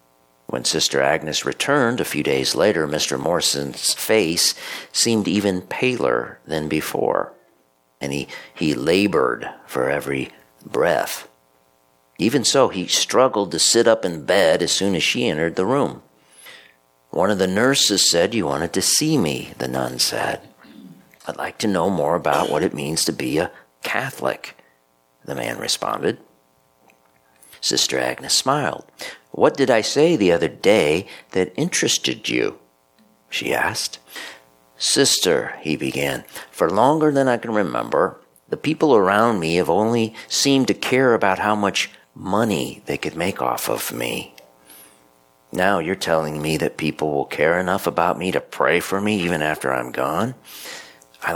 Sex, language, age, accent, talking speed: male, English, 50-69, American, 155 wpm